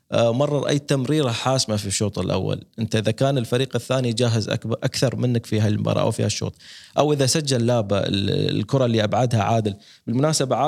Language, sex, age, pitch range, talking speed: Arabic, male, 20-39, 115-140 Hz, 170 wpm